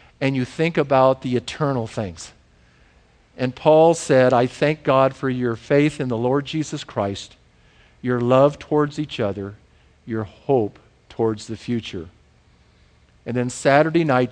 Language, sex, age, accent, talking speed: English, male, 50-69, American, 145 wpm